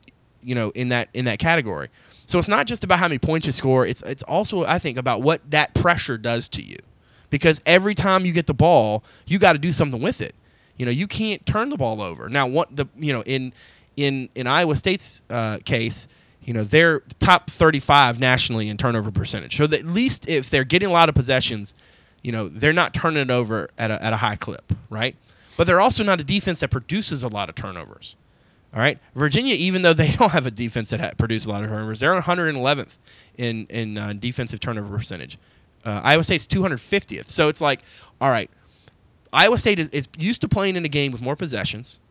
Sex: male